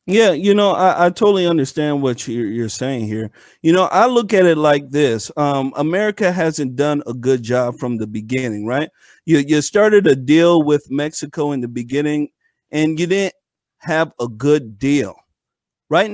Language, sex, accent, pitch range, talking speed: English, male, American, 135-190 Hz, 180 wpm